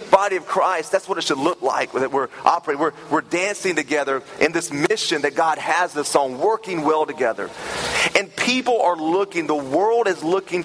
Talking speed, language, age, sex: 195 wpm, English, 40-59, male